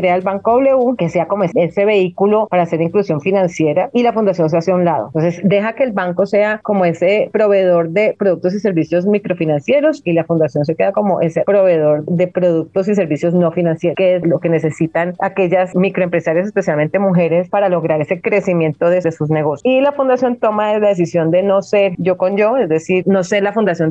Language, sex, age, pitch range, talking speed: Spanish, female, 30-49, 165-200 Hz, 210 wpm